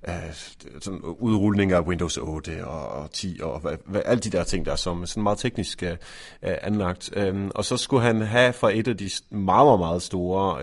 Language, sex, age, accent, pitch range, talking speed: Danish, male, 30-49, native, 85-110 Hz, 200 wpm